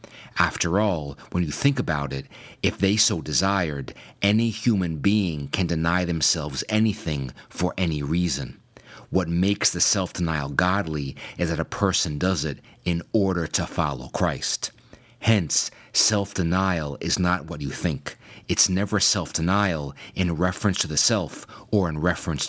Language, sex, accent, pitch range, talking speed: English, male, American, 80-100 Hz, 145 wpm